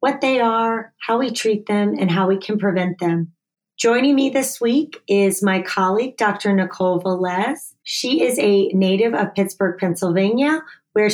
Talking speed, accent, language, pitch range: 165 wpm, American, English, 190-225 Hz